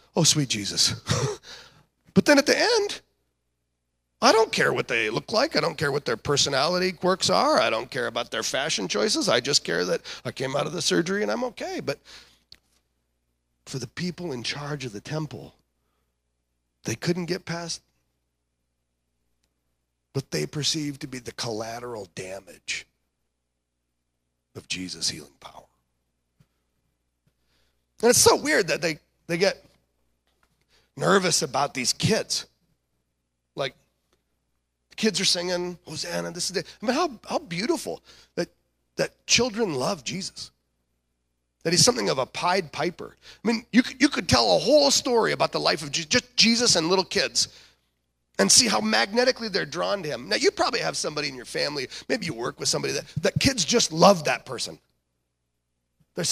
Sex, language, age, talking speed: male, English, 40-59, 165 wpm